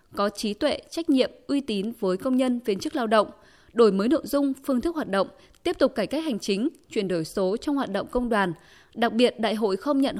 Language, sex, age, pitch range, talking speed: Vietnamese, female, 20-39, 200-280 Hz, 245 wpm